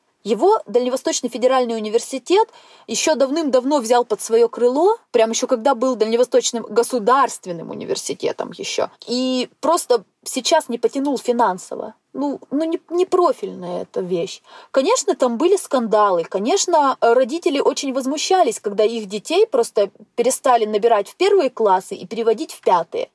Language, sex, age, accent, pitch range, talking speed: Russian, female, 20-39, native, 225-335 Hz, 135 wpm